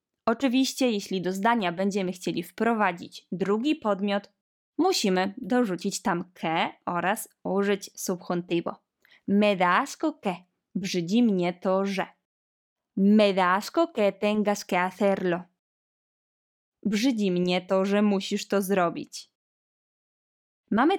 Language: Polish